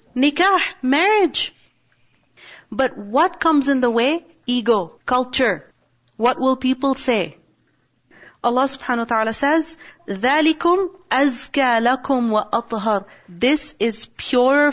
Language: English